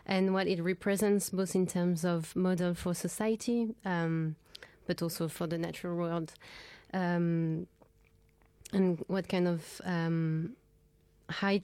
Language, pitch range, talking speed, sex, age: English, 170-190 Hz, 130 wpm, female, 20-39